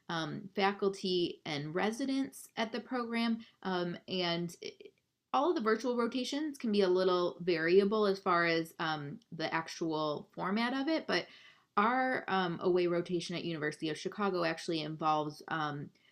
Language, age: English, 20-39